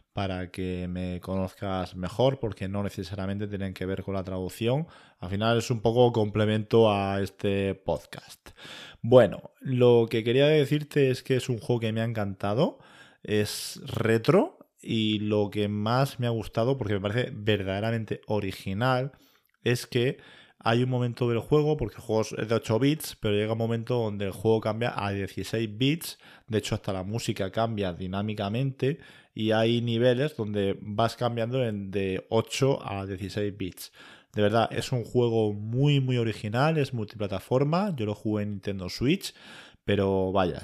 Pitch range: 95-120 Hz